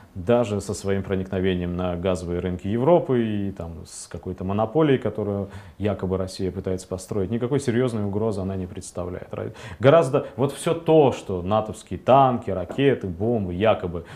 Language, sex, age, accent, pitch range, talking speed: Russian, male, 20-39, native, 95-120 Hz, 145 wpm